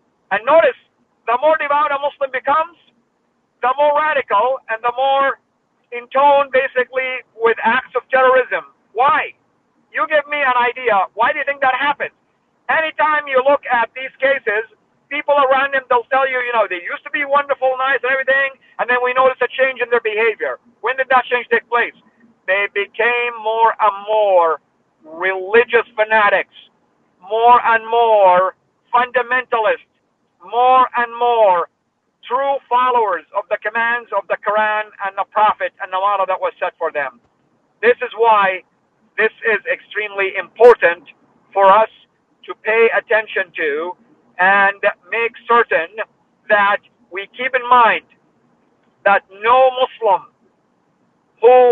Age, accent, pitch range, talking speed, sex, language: 50-69, American, 215-270 Hz, 150 wpm, male, English